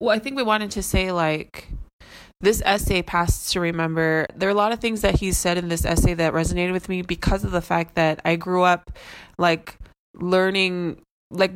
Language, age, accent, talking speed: English, 20-39, American, 210 wpm